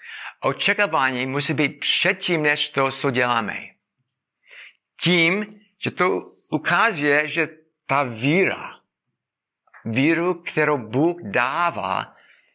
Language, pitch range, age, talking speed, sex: Czech, 125-160 Hz, 60-79, 90 wpm, male